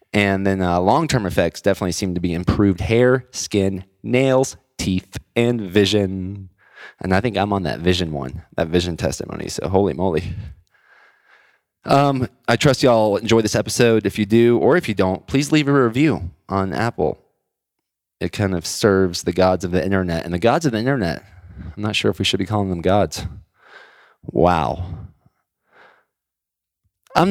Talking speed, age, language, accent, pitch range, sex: 170 wpm, 20-39, English, American, 85-100 Hz, male